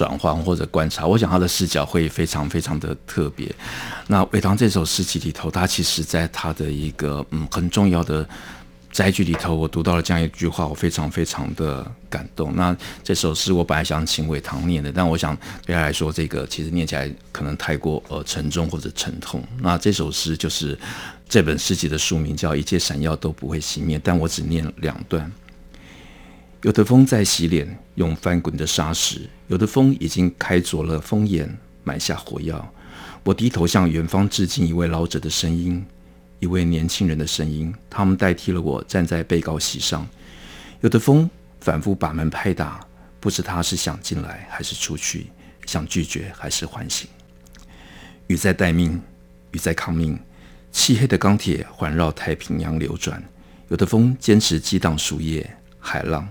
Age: 50-69